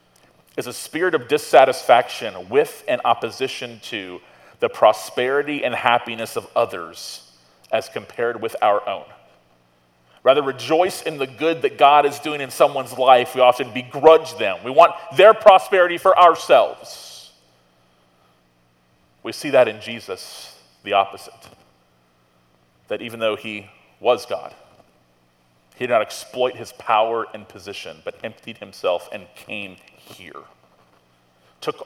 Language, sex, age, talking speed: English, male, 30-49, 130 wpm